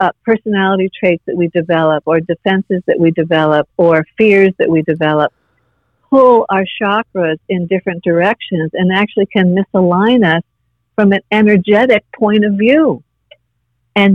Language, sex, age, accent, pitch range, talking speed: English, female, 50-69, American, 160-210 Hz, 145 wpm